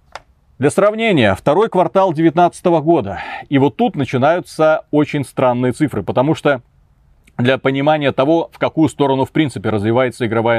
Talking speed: 140 wpm